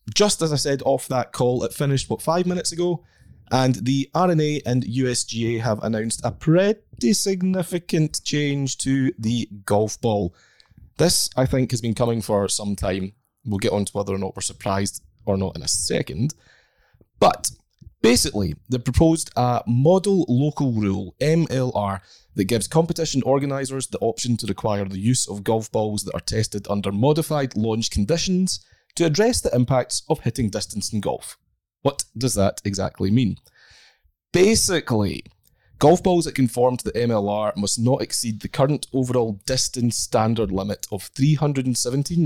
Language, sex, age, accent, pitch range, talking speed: English, male, 20-39, British, 105-150 Hz, 160 wpm